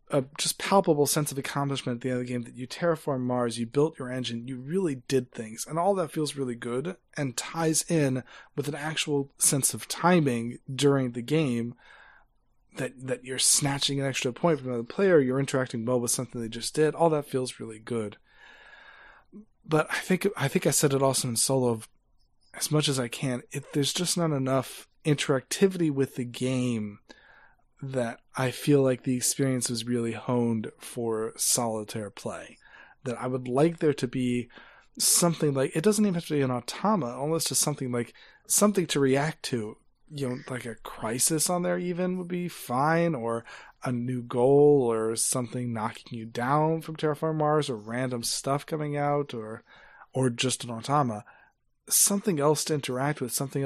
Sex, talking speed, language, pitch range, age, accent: male, 185 wpm, English, 125-155 Hz, 20-39, American